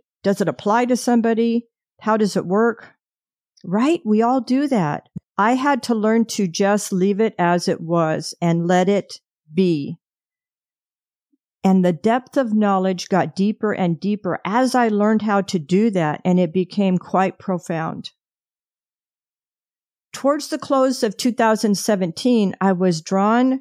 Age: 50-69